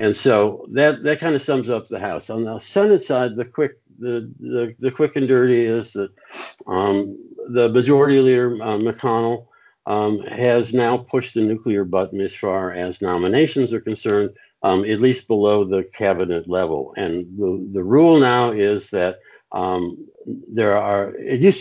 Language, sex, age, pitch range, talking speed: English, male, 60-79, 100-130 Hz, 170 wpm